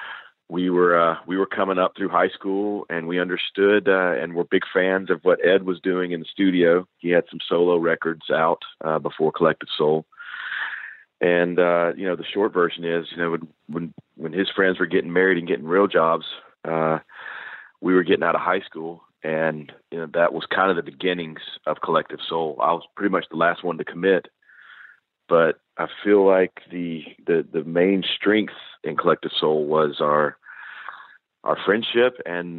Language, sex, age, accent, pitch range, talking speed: English, male, 40-59, American, 85-95 Hz, 190 wpm